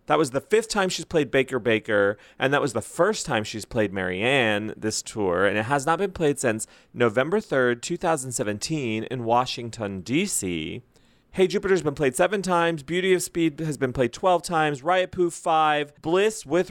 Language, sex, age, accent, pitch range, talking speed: English, male, 30-49, American, 120-175 Hz, 185 wpm